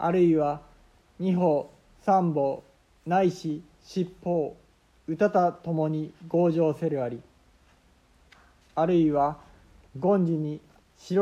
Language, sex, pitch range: Japanese, male, 140-175 Hz